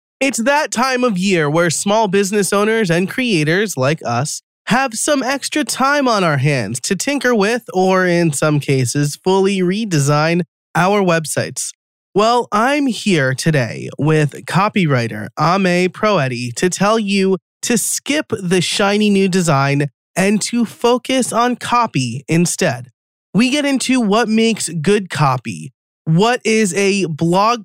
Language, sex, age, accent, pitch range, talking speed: English, male, 20-39, American, 145-210 Hz, 140 wpm